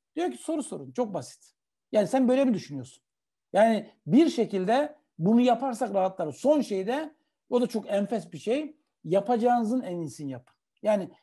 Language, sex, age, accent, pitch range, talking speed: Turkish, male, 60-79, native, 180-245 Hz, 160 wpm